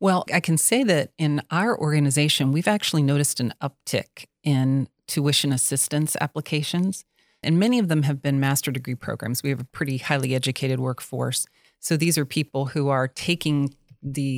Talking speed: 170 wpm